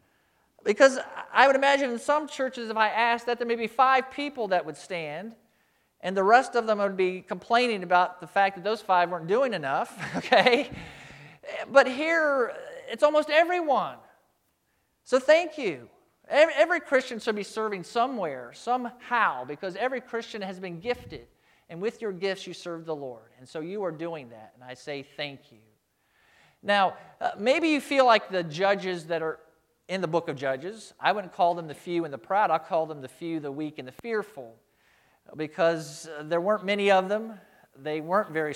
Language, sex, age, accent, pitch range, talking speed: English, male, 40-59, American, 160-245 Hz, 185 wpm